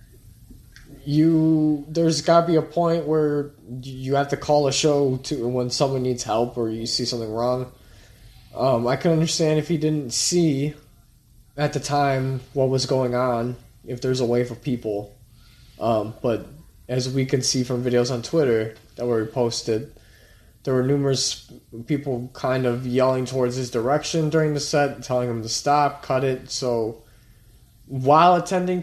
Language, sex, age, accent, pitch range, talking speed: English, male, 20-39, American, 120-150 Hz, 165 wpm